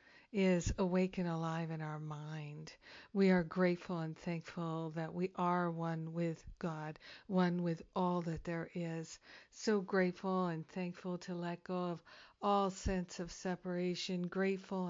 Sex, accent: female, American